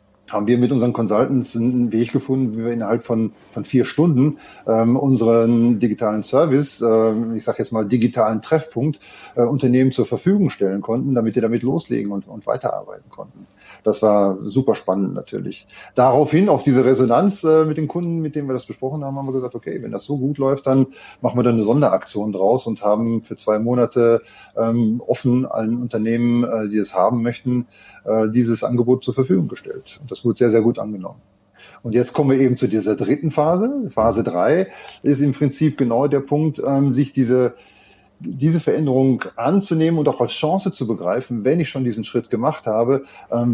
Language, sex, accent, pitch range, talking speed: German, male, German, 115-140 Hz, 190 wpm